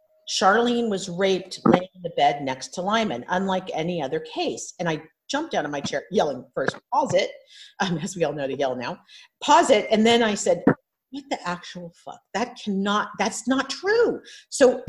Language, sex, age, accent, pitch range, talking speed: English, female, 50-69, American, 170-265 Hz, 200 wpm